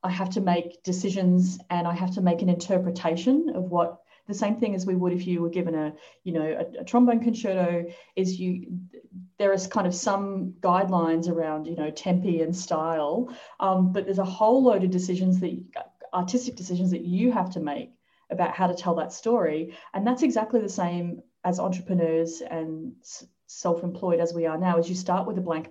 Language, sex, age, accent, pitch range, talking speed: English, female, 30-49, Australian, 170-200 Hz, 200 wpm